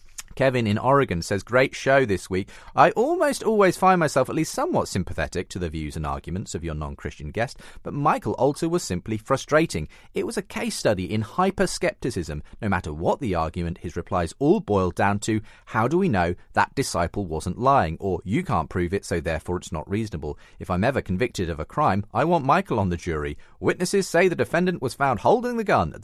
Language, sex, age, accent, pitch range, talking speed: English, male, 40-59, British, 90-140 Hz, 210 wpm